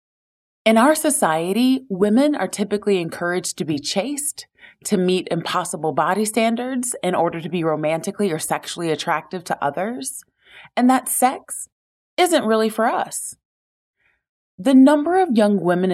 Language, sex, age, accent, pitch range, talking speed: English, female, 30-49, American, 180-245 Hz, 140 wpm